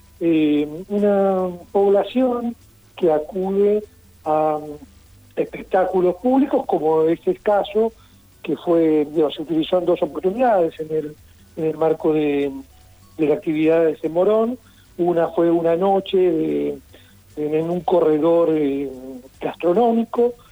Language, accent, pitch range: Spanish, Argentinian, 155-205 Hz